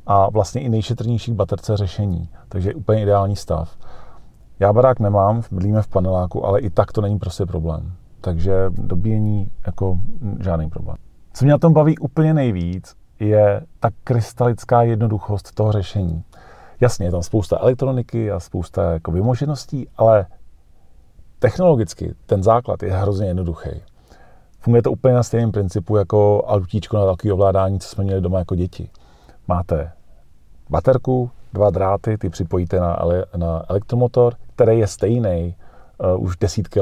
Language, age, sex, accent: Czech, 40-59, male, native